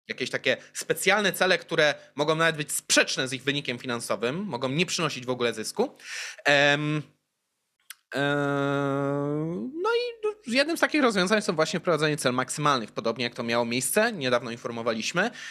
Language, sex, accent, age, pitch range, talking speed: Polish, male, native, 20-39, 140-210 Hz, 150 wpm